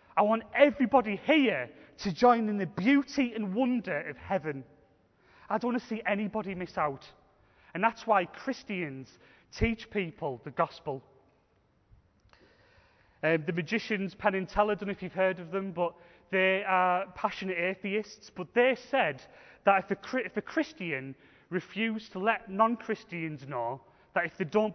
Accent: British